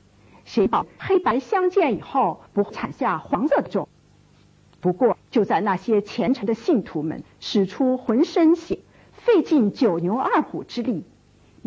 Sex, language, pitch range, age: female, Chinese, 190-310 Hz, 50-69